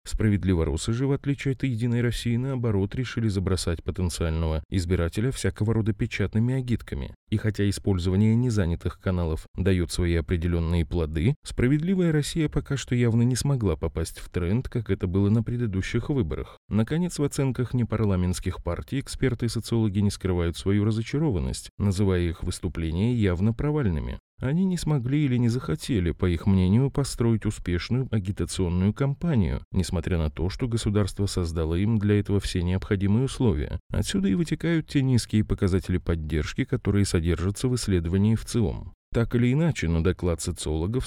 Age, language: 20-39, Russian